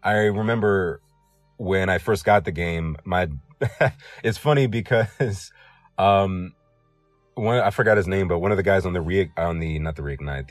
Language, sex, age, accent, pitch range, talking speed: English, male, 30-49, American, 80-105 Hz, 175 wpm